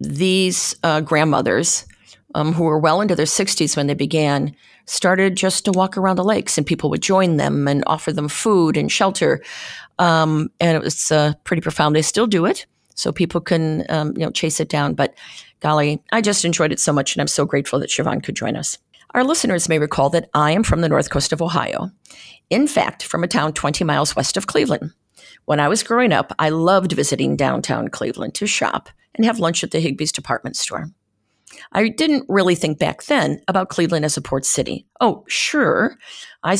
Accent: American